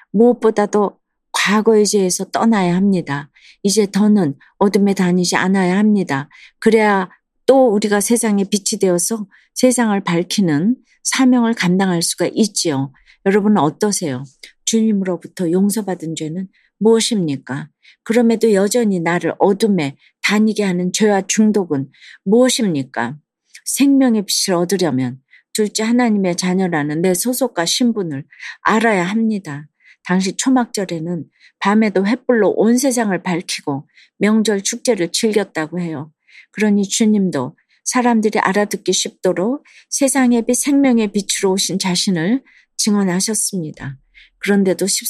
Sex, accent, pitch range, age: female, native, 175-225 Hz, 40-59